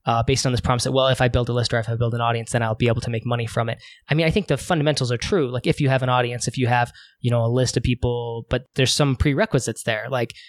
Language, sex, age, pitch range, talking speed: English, male, 20-39, 120-135 Hz, 320 wpm